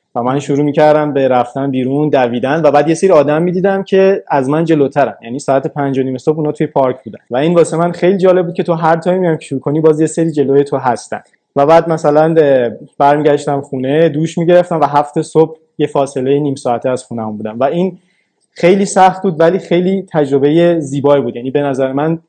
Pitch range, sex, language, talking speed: 135-165 Hz, male, Persian, 210 wpm